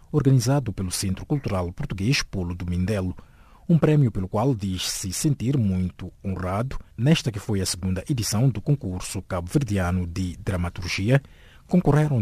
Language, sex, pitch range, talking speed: English, male, 90-130 Hz, 140 wpm